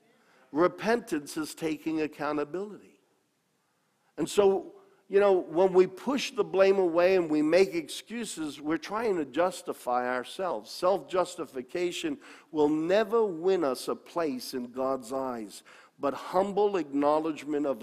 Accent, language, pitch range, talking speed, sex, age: American, English, 135-200 Hz, 125 wpm, male, 50-69